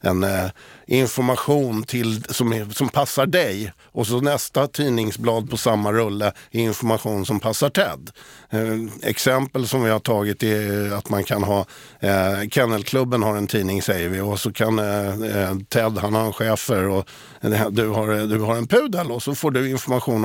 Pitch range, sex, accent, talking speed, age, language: 100-130 Hz, male, native, 180 wpm, 50-69, Swedish